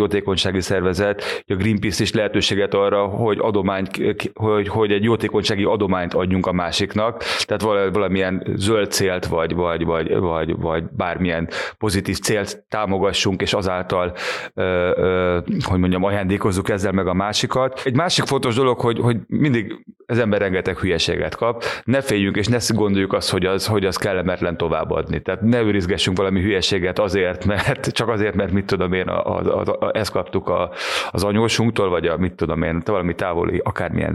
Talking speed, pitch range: 155 wpm, 95-105 Hz